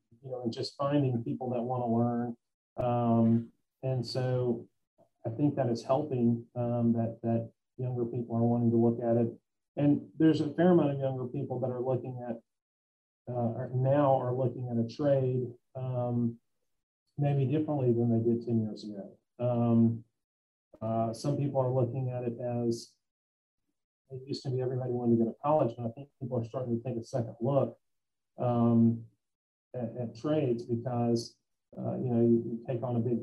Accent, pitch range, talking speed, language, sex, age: American, 115-130 Hz, 185 wpm, English, male, 40-59